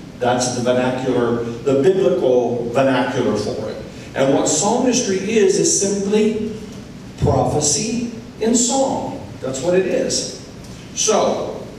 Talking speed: 110 wpm